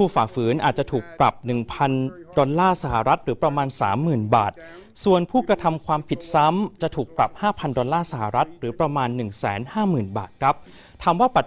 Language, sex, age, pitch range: Thai, male, 30-49, 130-175 Hz